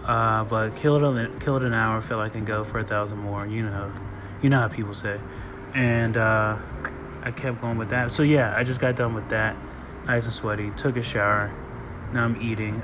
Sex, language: male, English